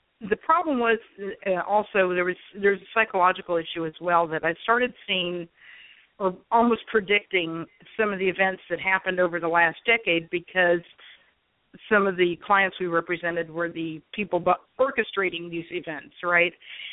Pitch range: 175-210 Hz